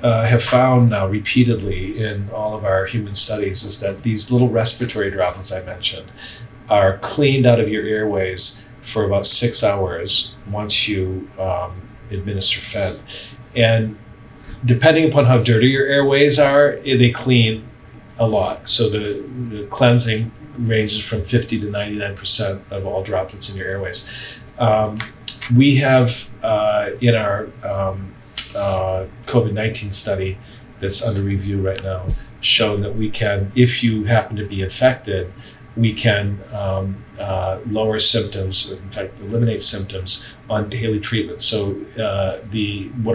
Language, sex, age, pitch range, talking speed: English, male, 40-59, 100-120 Hz, 145 wpm